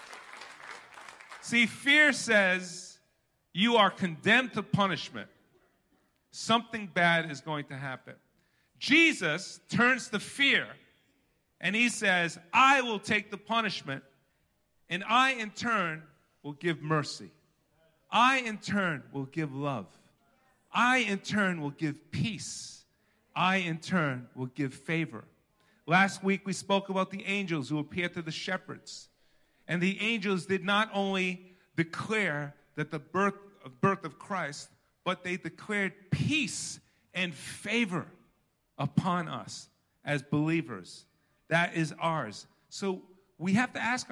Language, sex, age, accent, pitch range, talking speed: English, male, 40-59, American, 155-220 Hz, 125 wpm